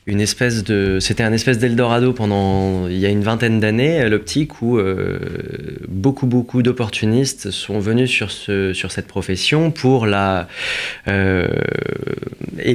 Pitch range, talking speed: 105-135 Hz, 145 wpm